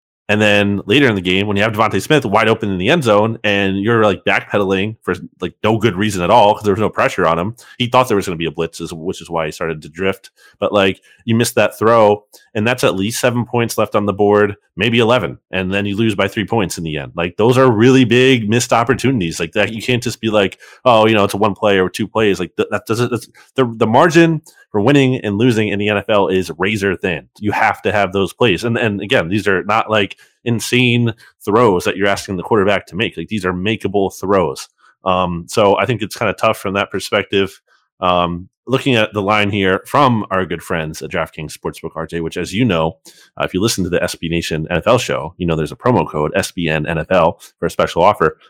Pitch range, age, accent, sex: 95-120 Hz, 30-49, American, male